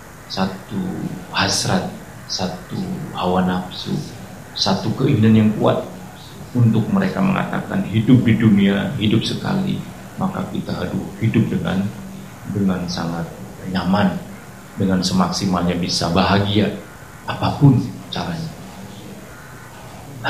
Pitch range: 95-125 Hz